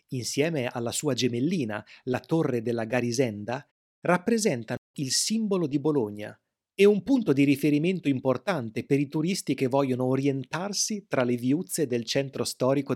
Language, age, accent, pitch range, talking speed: Italian, 30-49, native, 120-170 Hz, 145 wpm